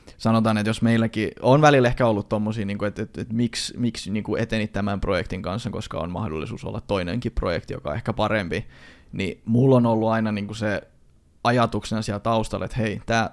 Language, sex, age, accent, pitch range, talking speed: Finnish, male, 20-39, native, 105-120 Hz, 185 wpm